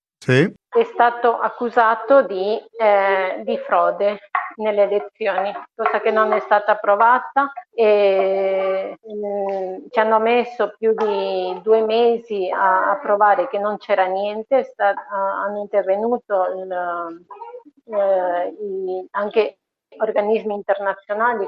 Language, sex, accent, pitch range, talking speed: Italian, female, native, 195-225 Hz, 115 wpm